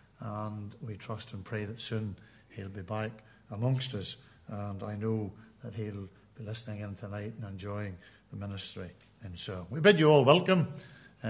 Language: English